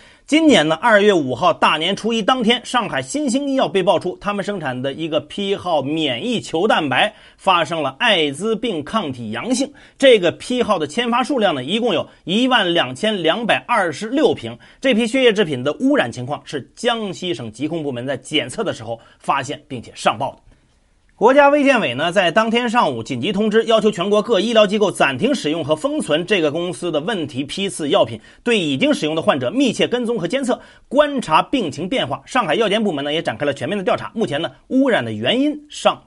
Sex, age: male, 30-49